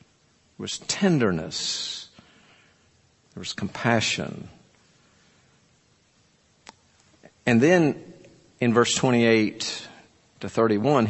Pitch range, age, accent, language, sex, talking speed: 110-135 Hz, 50-69, American, English, male, 70 wpm